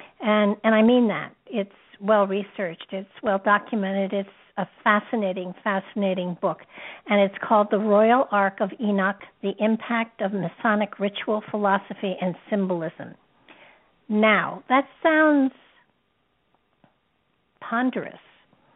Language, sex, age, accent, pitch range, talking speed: English, female, 60-79, American, 195-225 Hz, 110 wpm